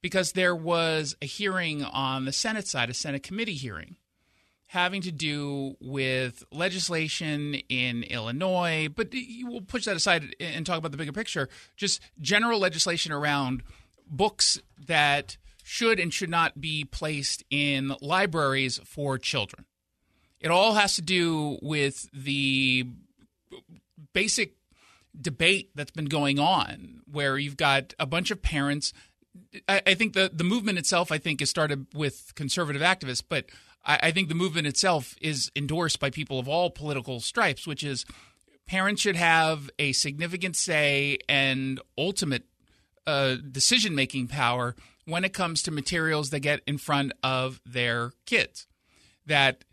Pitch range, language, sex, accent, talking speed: 135-175 Hz, English, male, American, 145 wpm